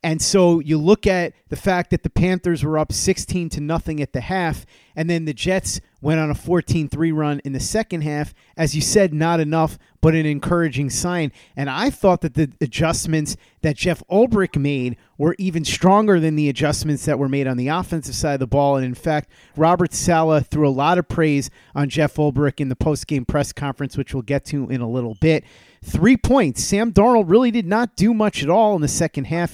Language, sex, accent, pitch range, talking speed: English, male, American, 145-175 Hz, 215 wpm